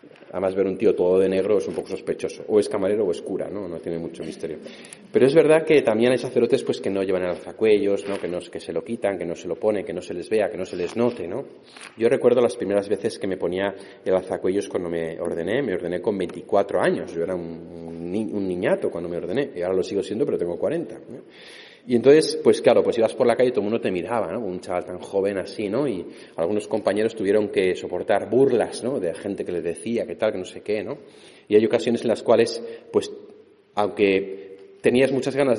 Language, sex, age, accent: Spanish, male, 30-49, Spanish